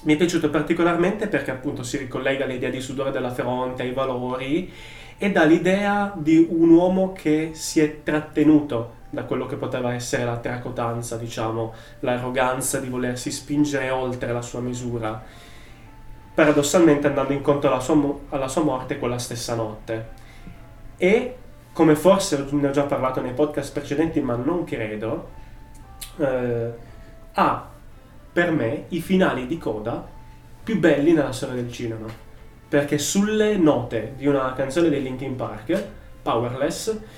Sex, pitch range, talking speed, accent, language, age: male, 125-155 Hz, 140 wpm, native, Italian, 20-39